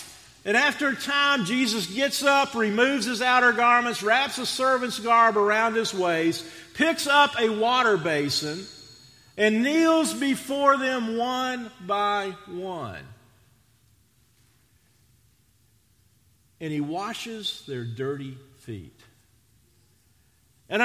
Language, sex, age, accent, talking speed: English, male, 50-69, American, 105 wpm